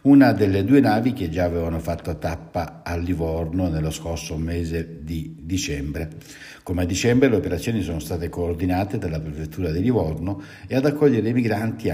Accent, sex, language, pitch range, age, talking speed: native, male, Italian, 85-110 Hz, 60-79, 165 wpm